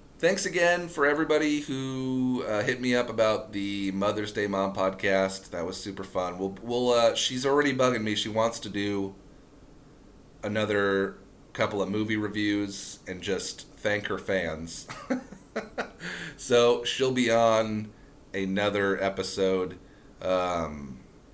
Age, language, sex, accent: 30-49, English, male, American